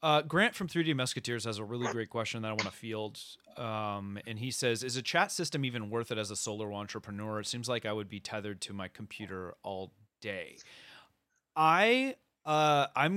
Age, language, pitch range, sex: 30-49, English, 115-145 Hz, male